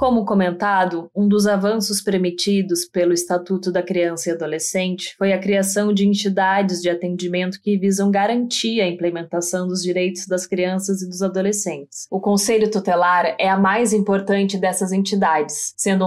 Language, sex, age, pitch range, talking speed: Portuguese, female, 20-39, 180-205 Hz, 155 wpm